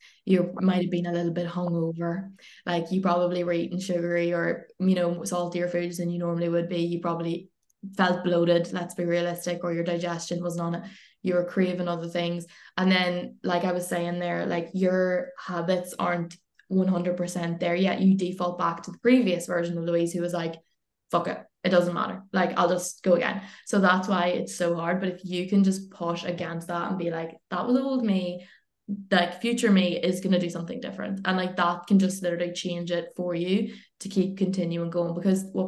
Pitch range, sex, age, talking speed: 175-185 Hz, female, 20-39, 205 wpm